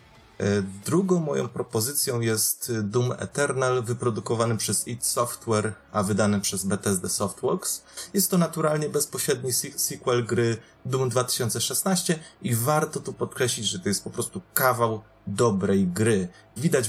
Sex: male